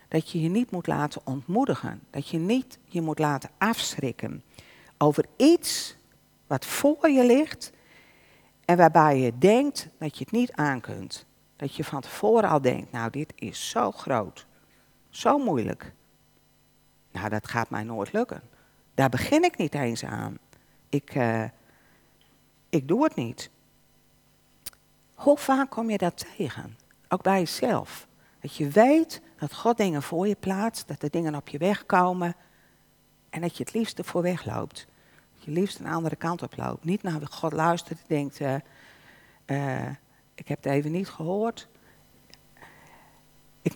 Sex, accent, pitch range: female, Dutch, 140-200 Hz